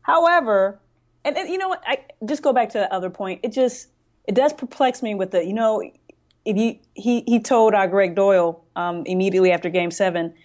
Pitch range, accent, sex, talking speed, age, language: 180-235 Hz, American, female, 210 wpm, 20-39, English